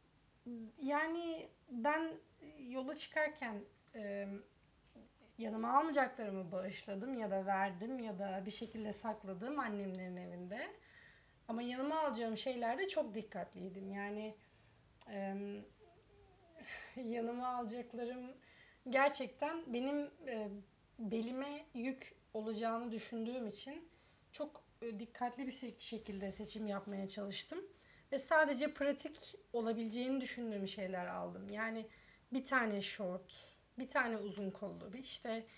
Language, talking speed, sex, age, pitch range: Turkish, 95 wpm, female, 30-49, 205-270 Hz